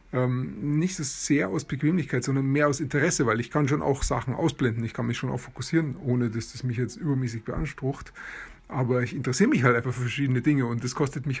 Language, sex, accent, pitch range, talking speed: German, male, German, 130-165 Hz, 220 wpm